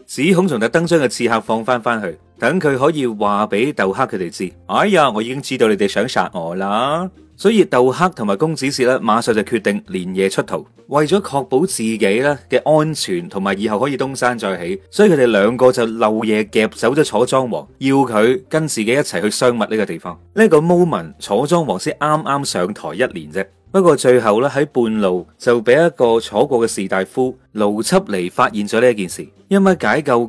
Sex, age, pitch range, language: male, 30-49, 110-150 Hz, Chinese